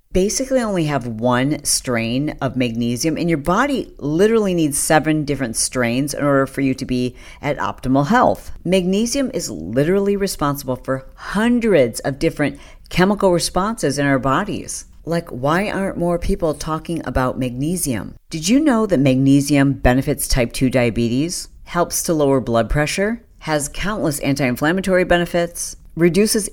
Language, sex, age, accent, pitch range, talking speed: English, female, 50-69, American, 130-175 Hz, 145 wpm